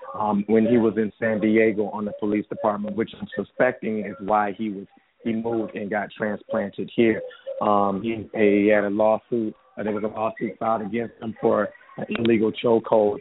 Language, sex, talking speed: English, male, 180 wpm